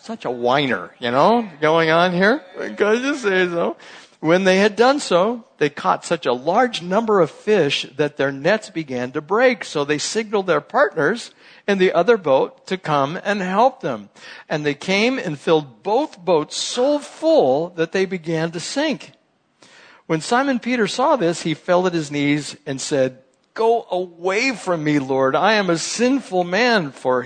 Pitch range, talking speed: 145-220 Hz, 180 wpm